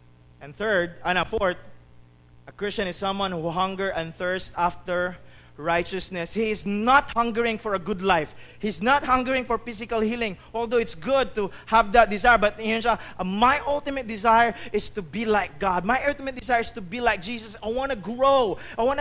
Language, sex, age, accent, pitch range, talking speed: English, male, 30-49, Filipino, 160-255 Hz, 185 wpm